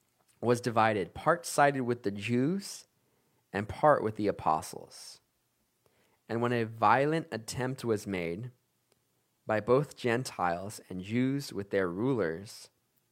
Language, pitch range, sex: English, 105-130 Hz, male